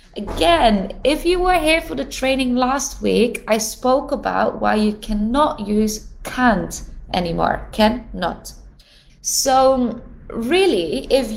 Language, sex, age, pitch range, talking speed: English, female, 20-39, 210-275 Hz, 125 wpm